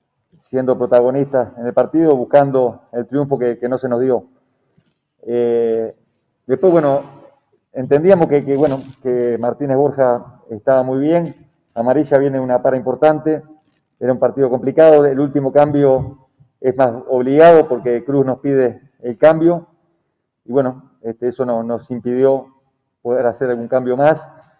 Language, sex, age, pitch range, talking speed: Spanish, male, 40-59, 120-145 Hz, 145 wpm